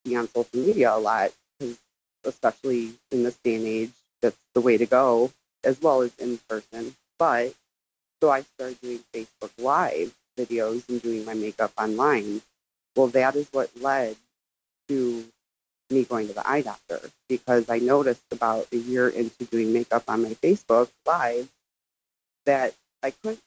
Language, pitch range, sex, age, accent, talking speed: English, 115-140 Hz, female, 30-49, American, 165 wpm